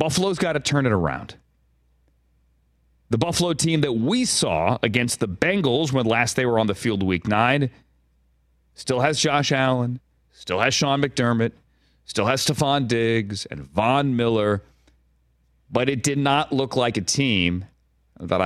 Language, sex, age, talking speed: English, male, 40-59, 155 wpm